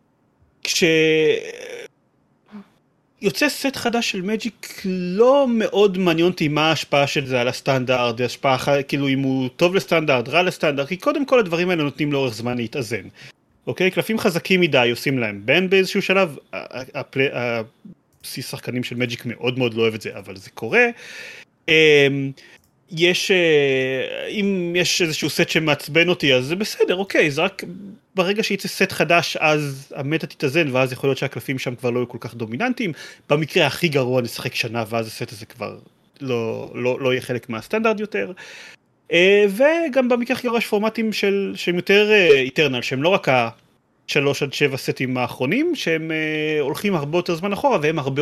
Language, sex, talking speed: Hebrew, male, 165 wpm